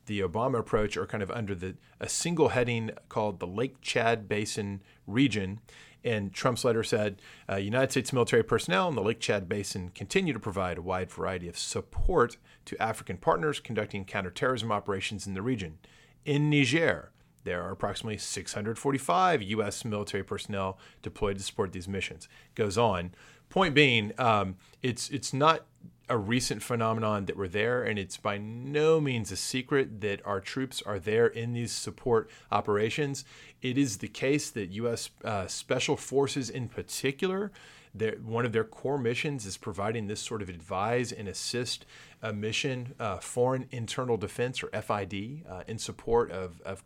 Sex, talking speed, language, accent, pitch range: male, 165 wpm, English, American, 100-130 Hz